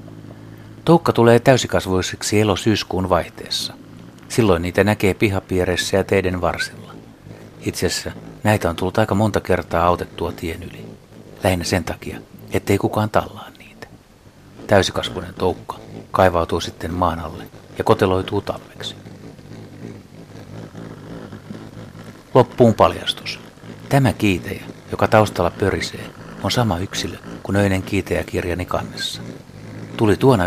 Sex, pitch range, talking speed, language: male, 90-110 Hz, 105 wpm, Finnish